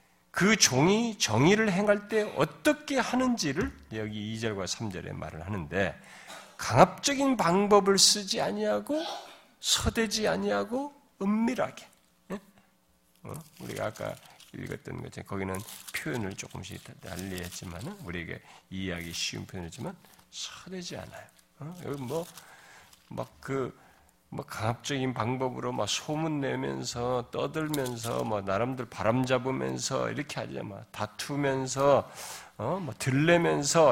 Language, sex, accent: Korean, male, native